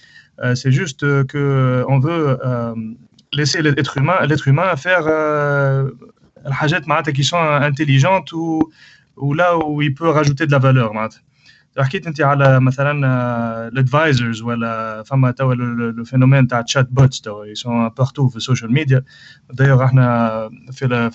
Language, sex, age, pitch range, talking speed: English, male, 30-49, 125-145 Hz, 155 wpm